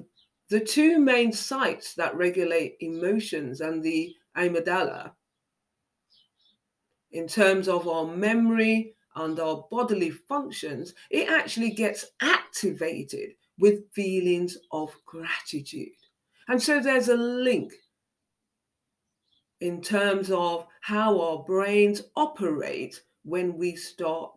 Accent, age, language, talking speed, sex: British, 40-59, English, 105 wpm, female